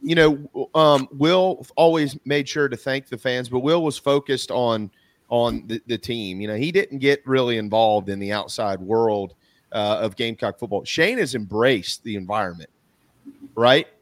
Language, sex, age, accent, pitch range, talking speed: English, male, 30-49, American, 120-155 Hz, 175 wpm